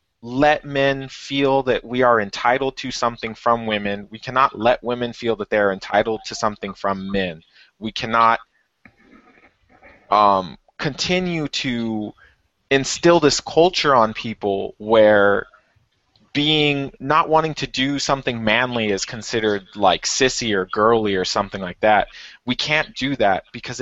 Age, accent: 20-39, American